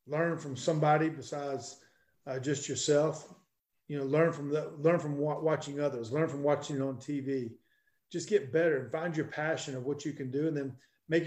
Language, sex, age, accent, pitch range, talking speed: English, male, 40-59, American, 140-170 Hz, 200 wpm